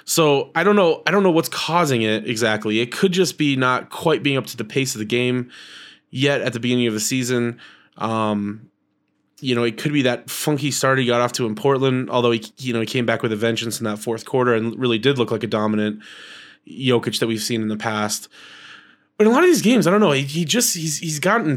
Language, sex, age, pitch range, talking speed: English, male, 20-39, 115-145 Hz, 255 wpm